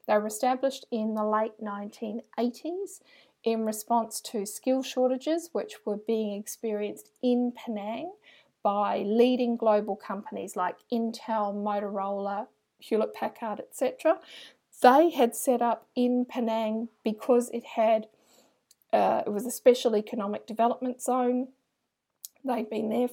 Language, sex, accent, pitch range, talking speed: English, female, Australian, 210-245 Hz, 125 wpm